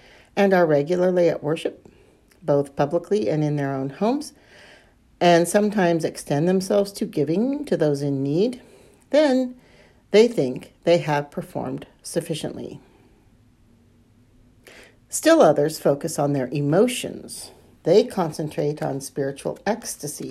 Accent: American